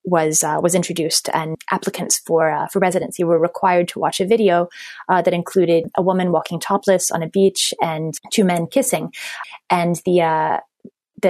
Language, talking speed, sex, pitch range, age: English, 175 wpm, female, 170-210 Hz, 20-39